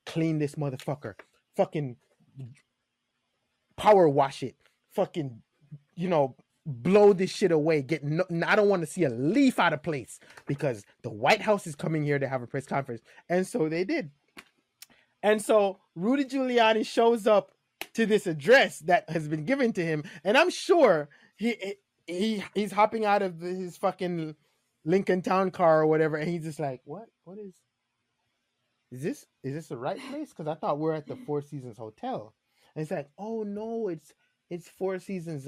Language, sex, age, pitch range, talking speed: English, male, 20-39, 145-195 Hz, 180 wpm